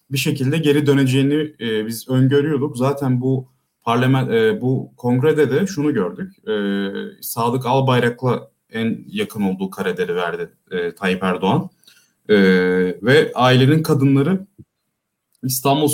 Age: 30-49